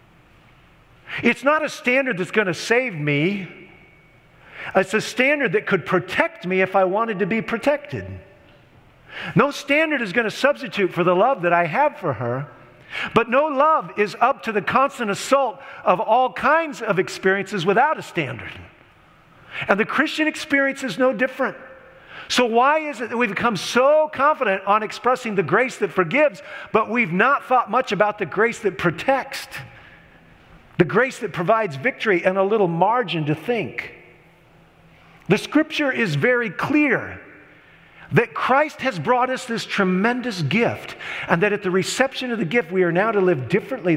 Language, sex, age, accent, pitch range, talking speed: English, male, 50-69, American, 180-255 Hz, 170 wpm